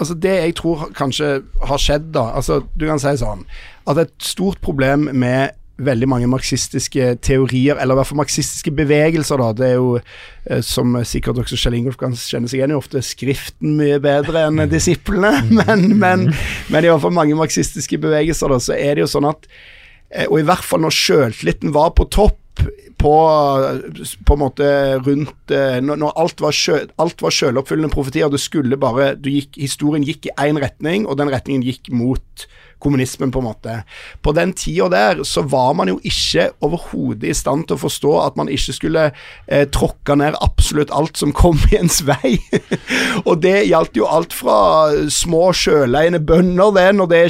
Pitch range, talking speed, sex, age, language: 135-165 Hz, 180 wpm, male, 50-69, English